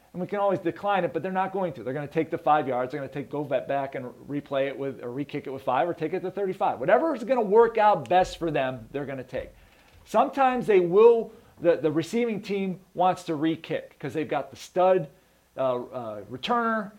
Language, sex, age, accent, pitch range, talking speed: English, male, 40-59, American, 150-215 Hz, 245 wpm